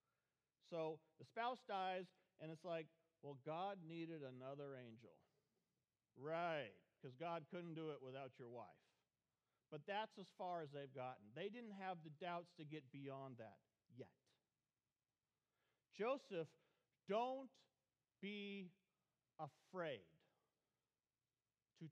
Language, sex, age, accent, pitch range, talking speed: English, male, 50-69, American, 140-195 Hz, 120 wpm